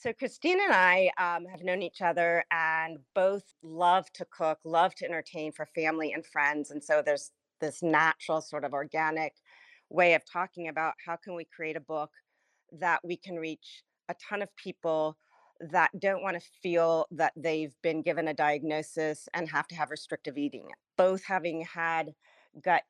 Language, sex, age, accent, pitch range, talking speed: English, female, 40-59, American, 150-175 Hz, 175 wpm